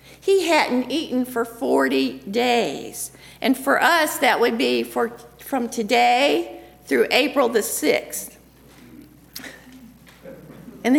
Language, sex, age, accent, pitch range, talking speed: English, female, 50-69, American, 240-310 Hz, 105 wpm